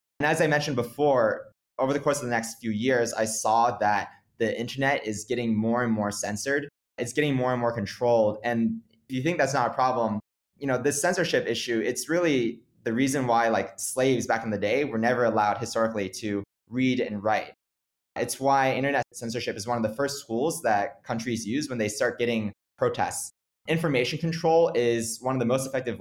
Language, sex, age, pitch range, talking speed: English, male, 20-39, 110-140 Hz, 205 wpm